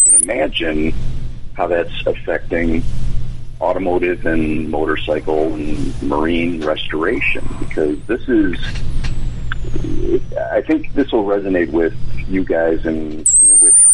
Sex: male